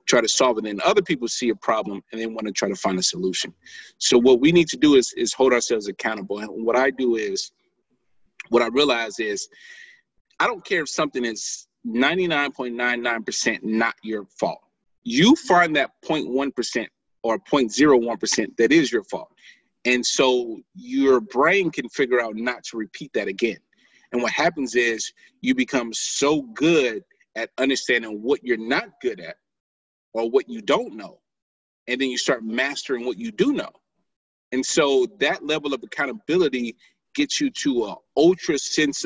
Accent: American